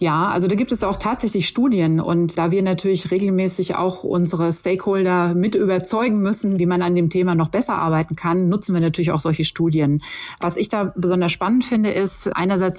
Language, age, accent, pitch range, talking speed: German, 30-49, German, 165-190 Hz, 195 wpm